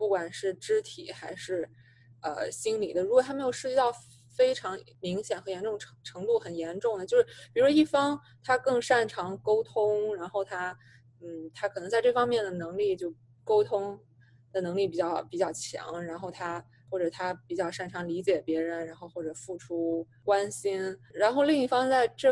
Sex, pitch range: female, 175-265 Hz